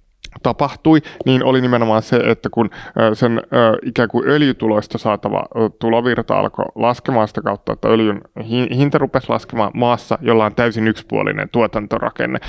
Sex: male